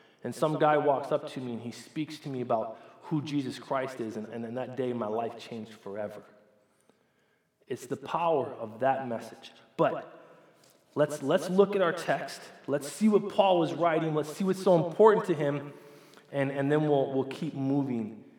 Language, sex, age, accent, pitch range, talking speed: English, male, 20-39, American, 130-180 Hz, 195 wpm